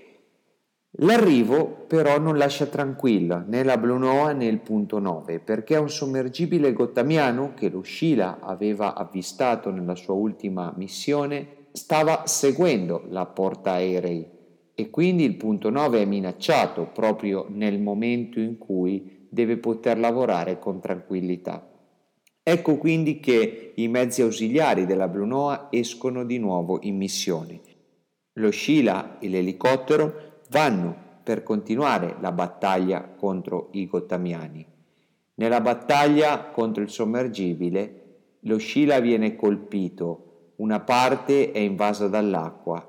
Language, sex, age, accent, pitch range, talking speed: Italian, male, 50-69, native, 95-130 Hz, 120 wpm